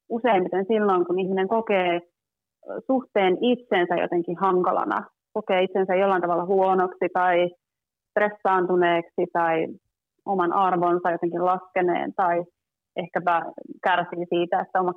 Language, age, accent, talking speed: Finnish, 30-49, native, 110 wpm